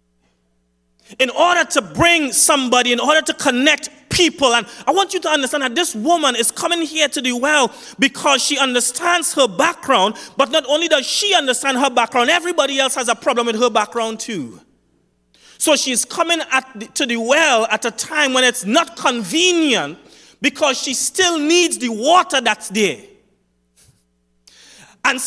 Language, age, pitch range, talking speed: English, 30-49, 175-295 Hz, 170 wpm